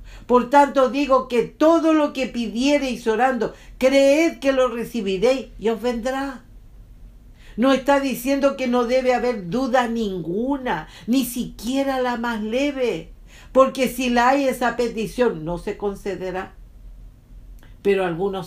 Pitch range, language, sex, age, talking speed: 210-260 Hz, English, female, 50-69, 135 wpm